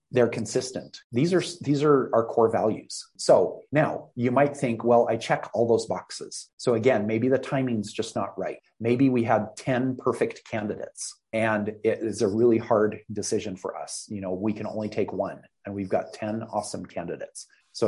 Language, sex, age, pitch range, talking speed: English, male, 30-49, 105-125 Hz, 190 wpm